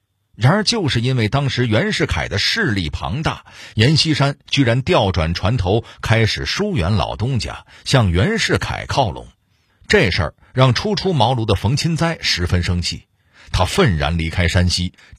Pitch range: 90-125 Hz